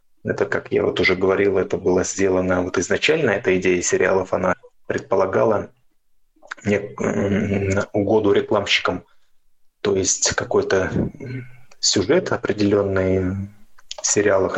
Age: 20-39